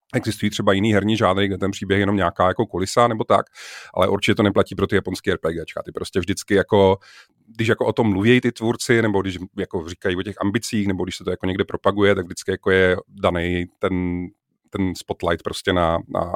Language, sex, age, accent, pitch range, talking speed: Czech, male, 30-49, native, 95-115 Hz, 215 wpm